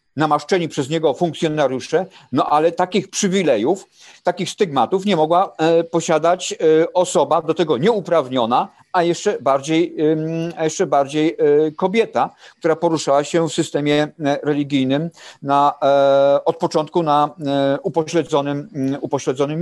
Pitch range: 145-185 Hz